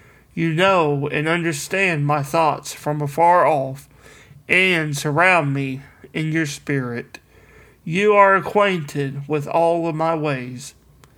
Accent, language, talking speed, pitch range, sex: American, English, 125 wpm, 140-175 Hz, male